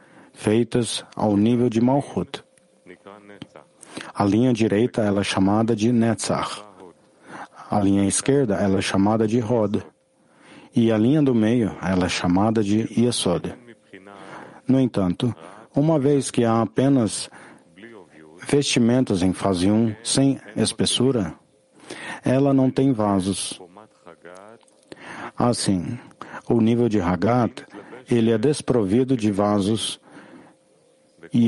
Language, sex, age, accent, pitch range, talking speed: English, male, 50-69, Brazilian, 100-125 Hz, 110 wpm